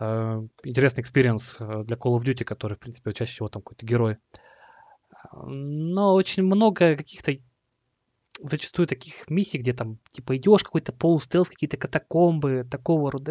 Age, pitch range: 20-39, 125-170 Hz